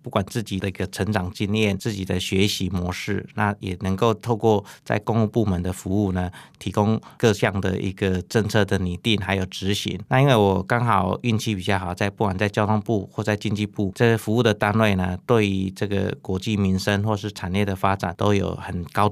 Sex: male